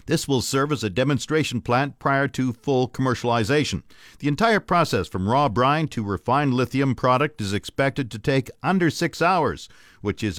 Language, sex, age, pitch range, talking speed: English, male, 50-69, 120-155 Hz, 175 wpm